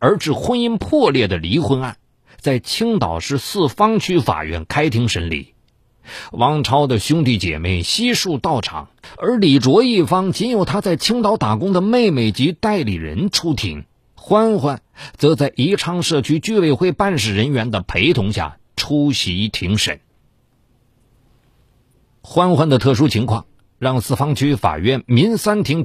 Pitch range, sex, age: 110-185 Hz, male, 50-69